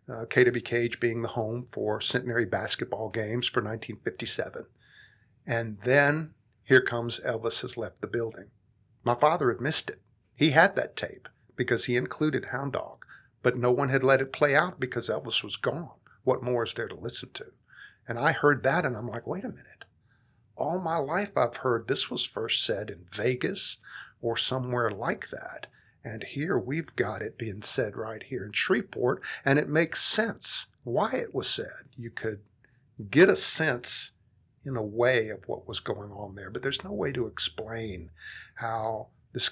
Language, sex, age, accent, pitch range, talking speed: English, male, 50-69, American, 115-130 Hz, 180 wpm